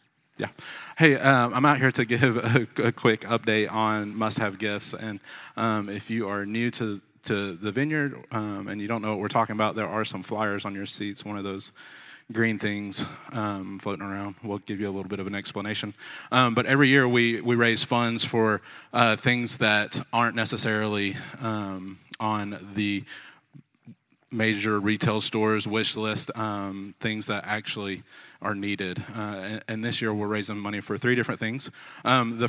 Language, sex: English, male